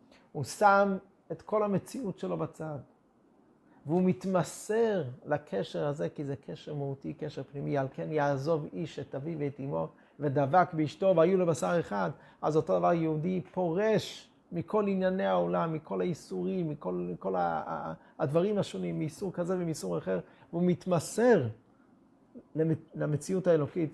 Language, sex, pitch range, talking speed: Hebrew, male, 135-180 Hz, 135 wpm